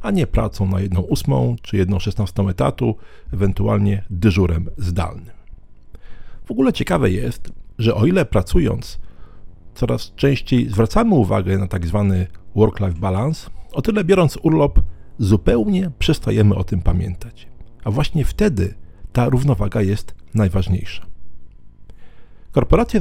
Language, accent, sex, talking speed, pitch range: Polish, native, male, 115 wpm, 90-120 Hz